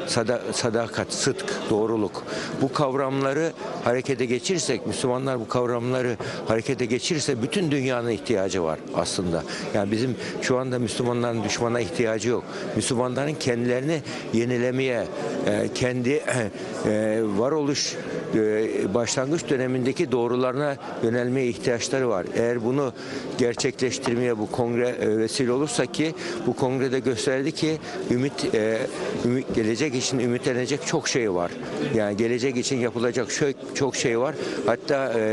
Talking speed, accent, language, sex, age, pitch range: 105 wpm, native, Turkish, male, 60-79, 115-135 Hz